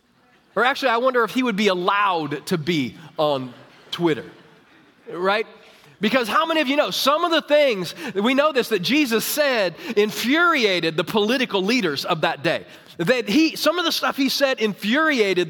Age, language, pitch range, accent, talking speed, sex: 30-49, English, 185-245 Hz, American, 180 wpm, male